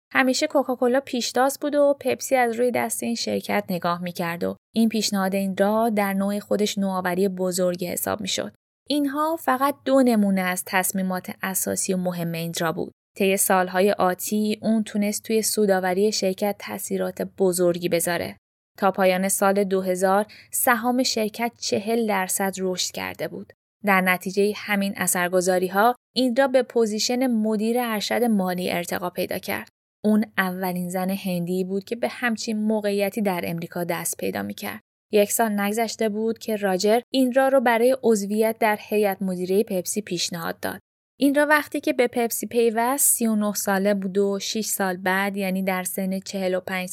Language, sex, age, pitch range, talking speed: Persian, female, 20-39, 185-230 Hz, 160 wpm